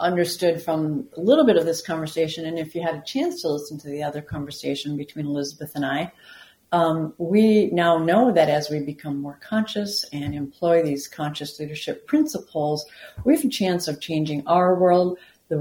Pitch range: 145-180 Hz